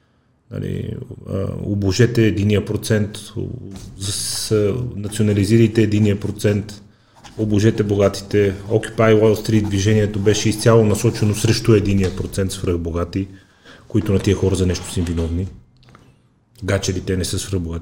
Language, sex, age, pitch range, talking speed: Bulgarian, male, 30-49, 95-115 Hz, 110 wpm